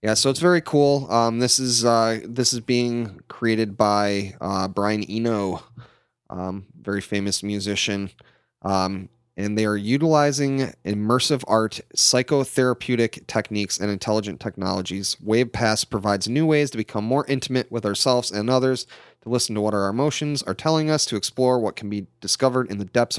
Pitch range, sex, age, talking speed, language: 100-120 Hz, male, 30-49, 165 wpm, English